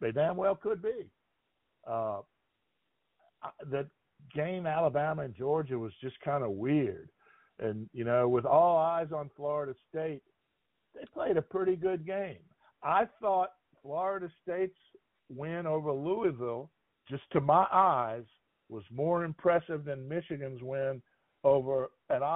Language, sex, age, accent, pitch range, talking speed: English, male, 50-69, American, 135-175 Hz, 135 wpm